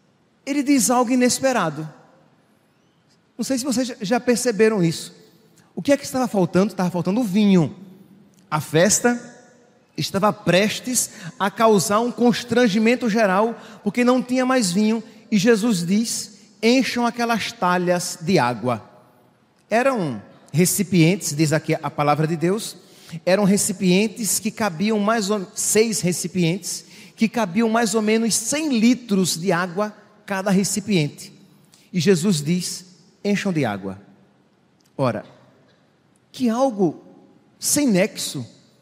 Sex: male